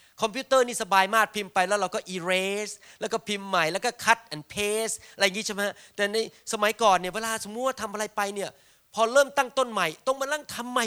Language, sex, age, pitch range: Thai, male, 30-49, 190-245 Hz